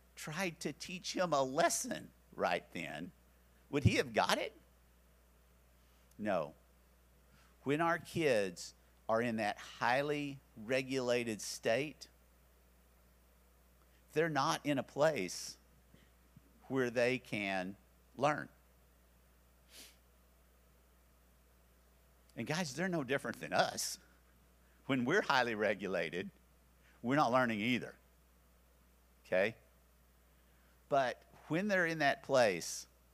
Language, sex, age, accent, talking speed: English, male, 50-69, American, 100 wpm